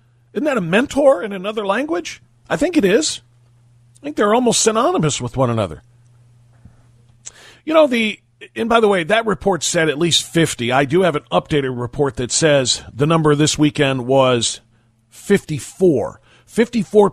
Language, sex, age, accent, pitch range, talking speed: English, male, 40-59, American, 120-180 Hz, 165 wpm